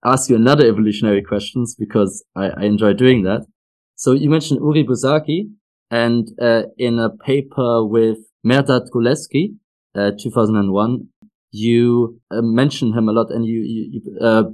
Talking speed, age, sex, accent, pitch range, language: 150 wpm, 20-39, male, German, 110-130 Hz, English